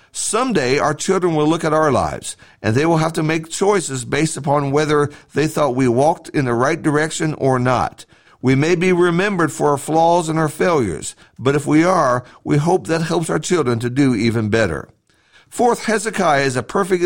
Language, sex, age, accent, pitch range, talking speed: English, male, 60-79, American, 130-175 Hz, 200 wpm